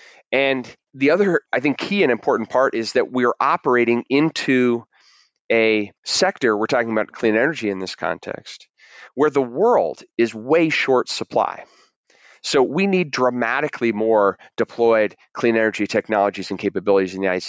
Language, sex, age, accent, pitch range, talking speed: English, male, 30-49, American, 95-120 Hz, 160 wpm